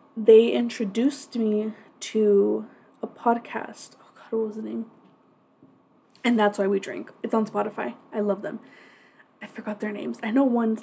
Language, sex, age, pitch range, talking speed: English, female, 20-39, 205-235 Hz, 165 wpm